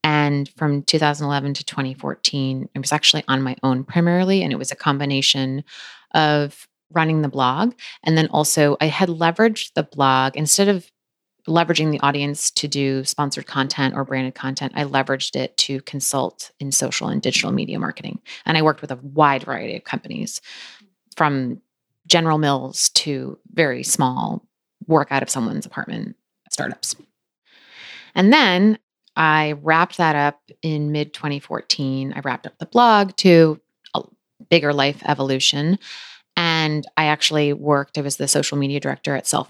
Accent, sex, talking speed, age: American, female, 155 wpm, 30-49